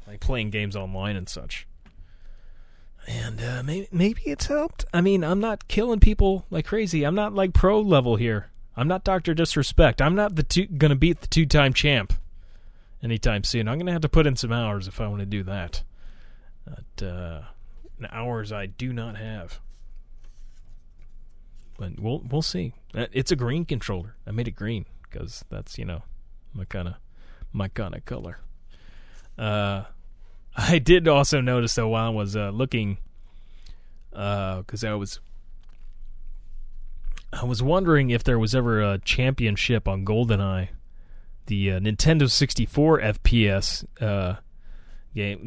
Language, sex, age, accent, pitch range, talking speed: English, male, 30-49, American, 95-135 Hz, 155 wpm